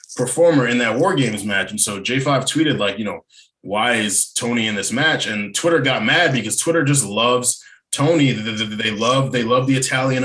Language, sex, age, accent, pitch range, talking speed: English, male, 20-39, American, 115-140 Hz, 200 wpm